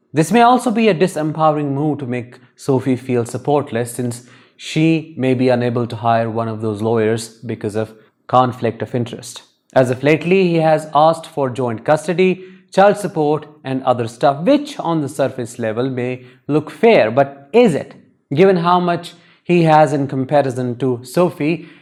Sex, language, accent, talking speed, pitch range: male, English, Indian, 170 wpm, 120-160 Hz